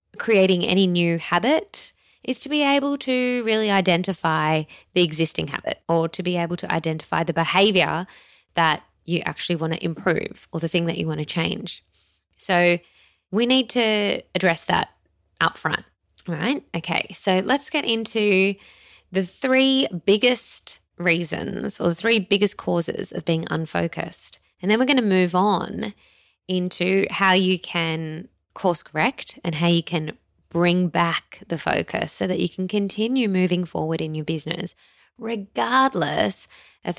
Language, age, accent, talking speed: English, 20-39, Australian, 155 wpm